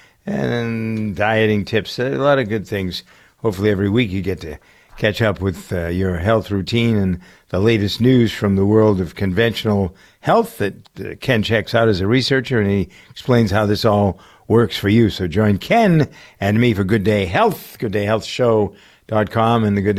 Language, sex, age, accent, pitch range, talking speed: English, male, 60-79, American, 100-125 Hz, 185 wpm